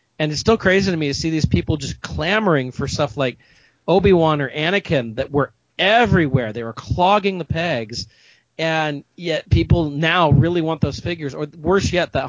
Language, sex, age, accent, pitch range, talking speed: English, male, 40-59, American, 125-160 Hz, 185 wpm